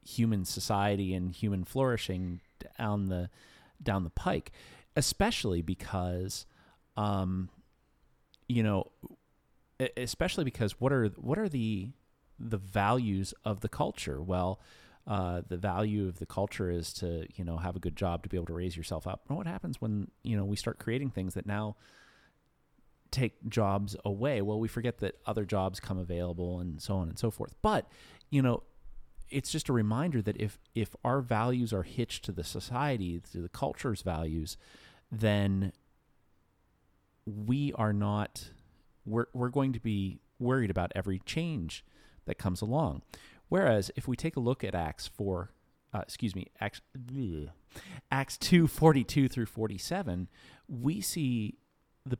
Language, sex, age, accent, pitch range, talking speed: English, male, 30-49, American, 90-120 Hz, 155 wpm